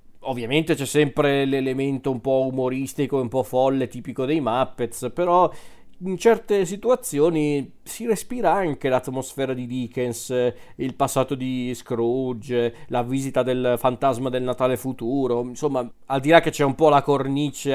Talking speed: 150 wpm